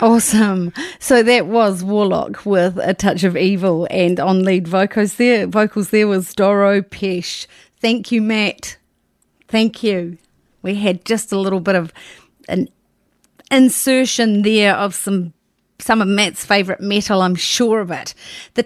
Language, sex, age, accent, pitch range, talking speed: English, female, 40-59, Australian, 185-225 Hz, 150 wpm